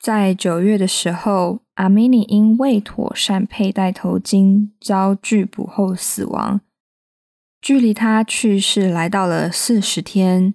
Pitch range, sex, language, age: 190-220 Hz, female, Chinese, 10-29